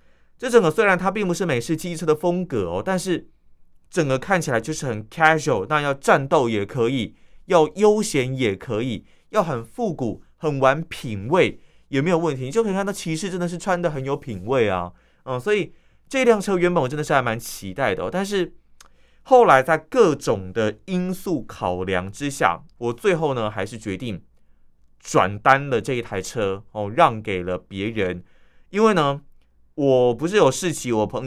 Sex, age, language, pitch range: male, 20-39, Chinese, 110-175 Hz